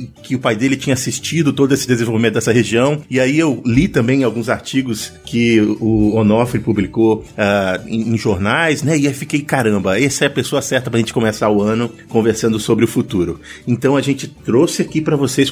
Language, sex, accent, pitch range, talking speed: Portuguese, male, Brazilian, 115-140 Hz, 205 wpm